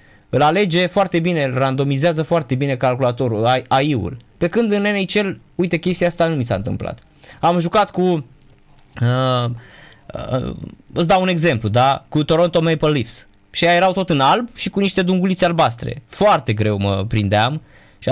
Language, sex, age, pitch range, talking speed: Romanian, male, 20-39, 115-170 Hz, 165 wpm